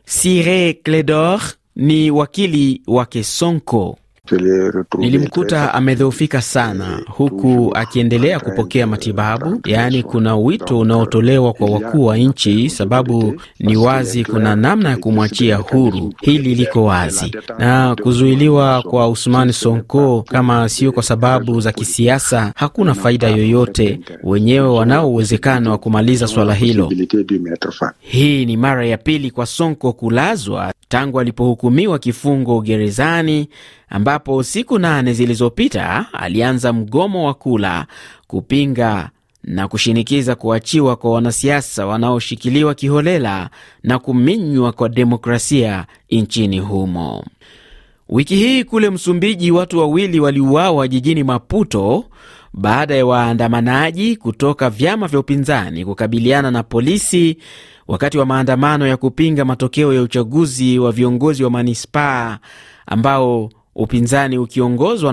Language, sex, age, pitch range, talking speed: Swahili, male, 30-49, 115-140 Hz, 110 wpm